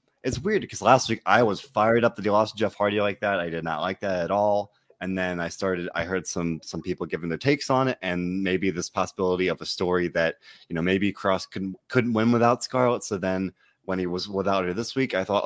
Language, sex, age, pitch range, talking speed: English, male, 20-39, 90-110 Hz, 250 wpm